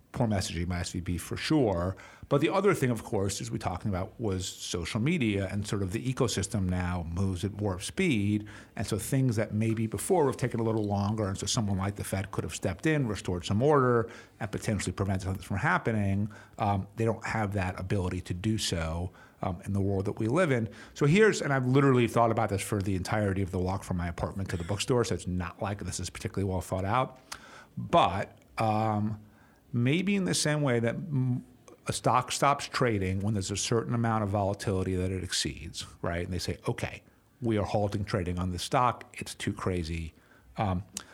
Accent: American